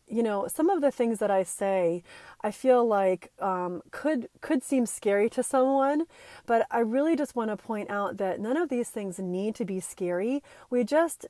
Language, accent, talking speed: English, American, 200 wpm